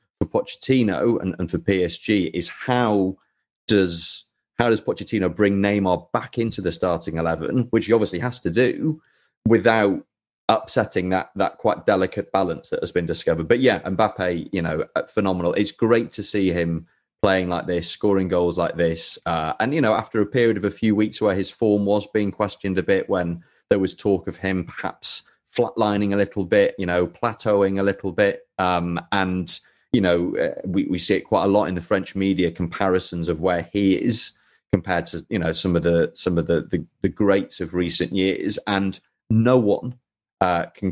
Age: 30-49